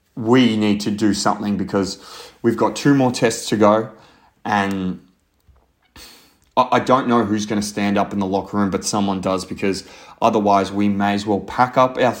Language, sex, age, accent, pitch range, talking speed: English, male, 30-49, Australian, 100-110 Hz, 185 wpm